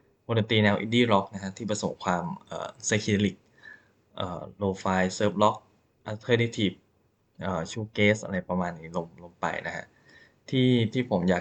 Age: 20-39